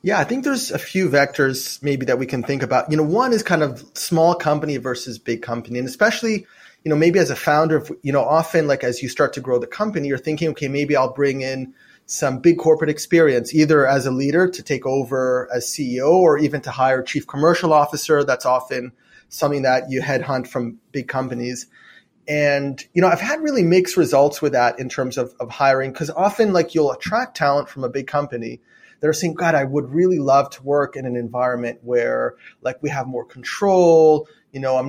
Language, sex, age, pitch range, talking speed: English, male, 30-49, 130-165 Hz, 215 wpm